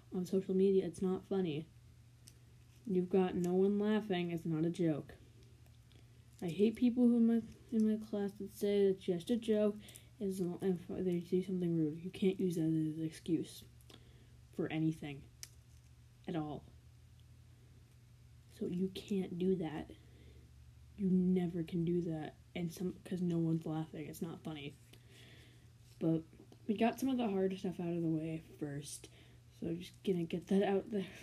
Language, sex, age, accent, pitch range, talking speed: English, female, 10-29, American, 125-185 Hz, 165 wpm